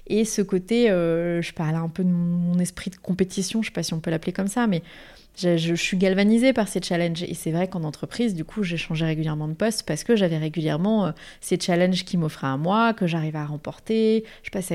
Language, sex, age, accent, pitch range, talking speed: French, female, 20-39, French, 170-205 Hz, 250 wpm